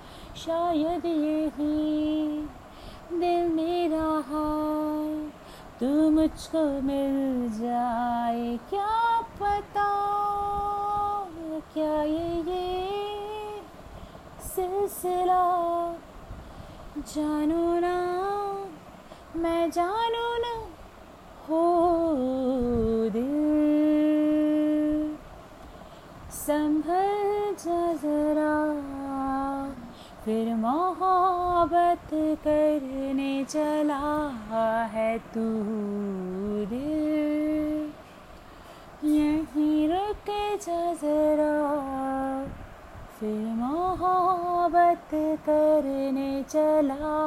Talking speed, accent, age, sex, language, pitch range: 45 wpm, native, 30-49, female, Hindi, 290-345 Hz